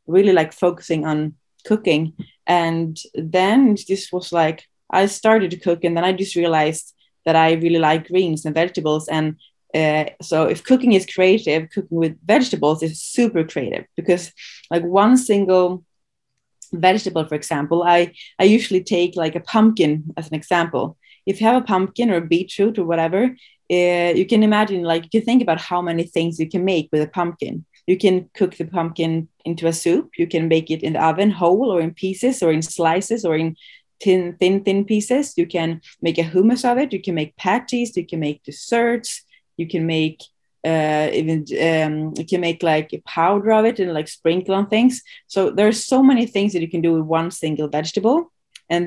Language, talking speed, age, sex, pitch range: English, 195 wpm, 20-39, female, 160-200 Hz